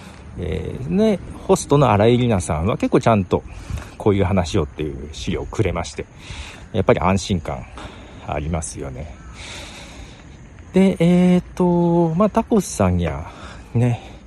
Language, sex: Japanese, male